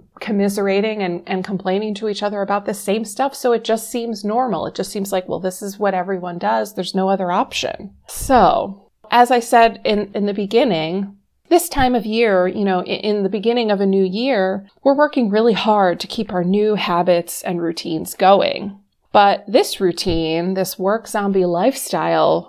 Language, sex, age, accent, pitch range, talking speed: English, female, 30-49, American, 190-240 Hz, 190 wpm